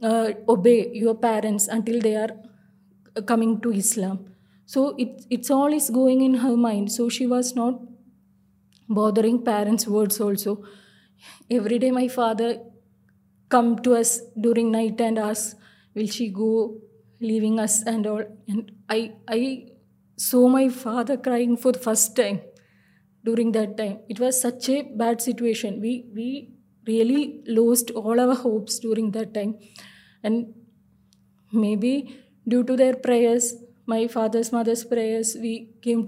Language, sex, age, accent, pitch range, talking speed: Hindi, female, 20-39, native, 215-245 Hz, 145 wpm